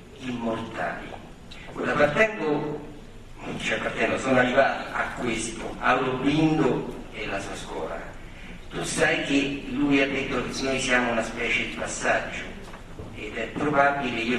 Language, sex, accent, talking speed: Italian, male, native, 130 wpm